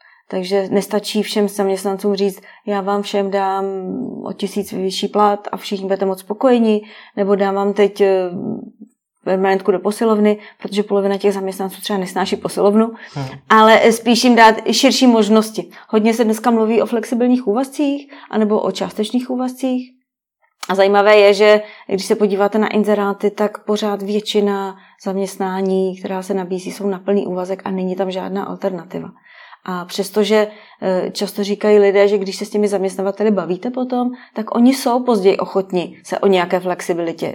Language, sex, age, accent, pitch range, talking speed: Czech, female, 30-49, native, 195-220 Hz, 155 wpm